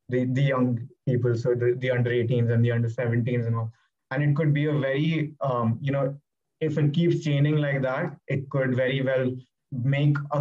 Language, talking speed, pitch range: English, 195 wpm, 125-145 Hz